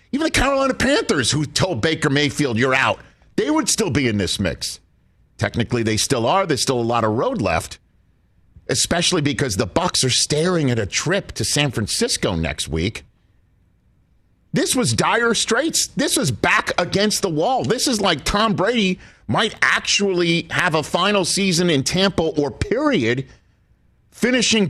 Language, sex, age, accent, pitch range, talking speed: English, male, 50-69, American, 110-175 Hz, 165 wpm